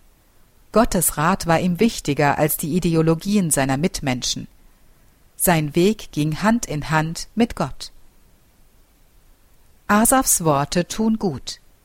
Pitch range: 150-205 Hz